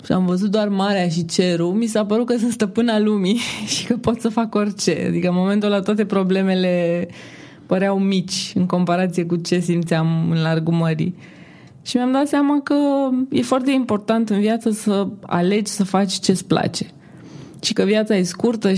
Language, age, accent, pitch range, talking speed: Romanian, 20-39, native, 180-230 Hz, 180 wpm